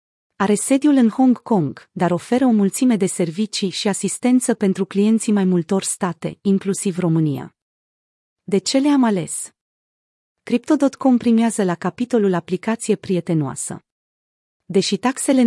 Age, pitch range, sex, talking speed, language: 30-49, 180-230 Hz, female, 125 wpm, Romanian